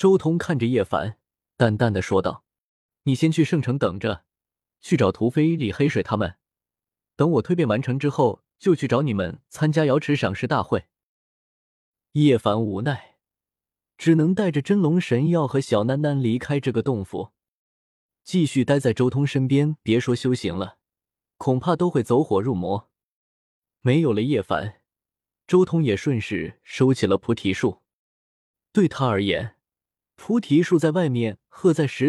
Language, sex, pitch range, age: Chinese, male, 115-160 Hz, 20-39